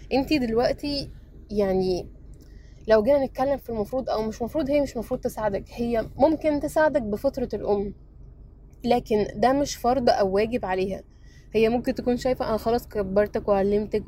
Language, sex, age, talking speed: Arabic, female, 10-29, 150 wpm